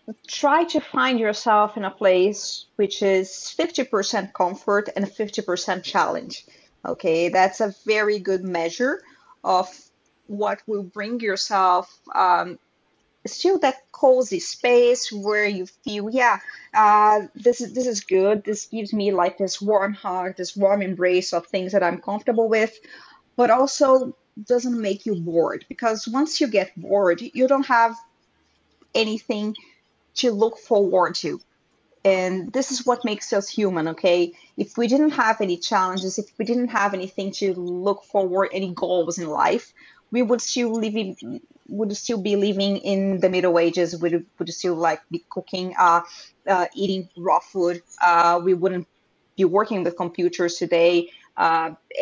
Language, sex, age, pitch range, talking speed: English, female, 30-49, 180-220 Hz, 160 wpm